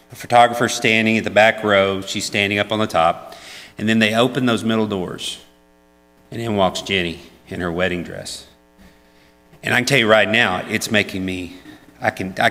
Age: 40-59